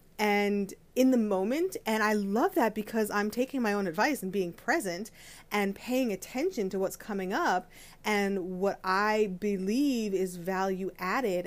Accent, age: American, 30-49